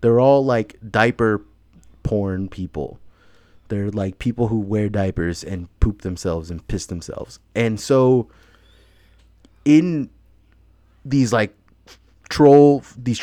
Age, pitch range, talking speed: 20-39, 100-125 Hz, 115 wpm